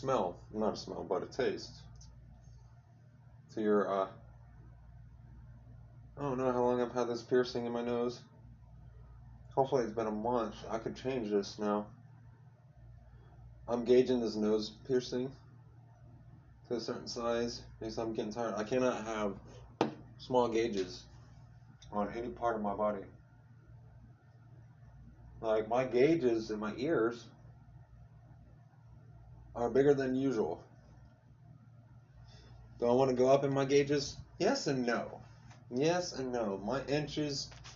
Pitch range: 115-125 Hz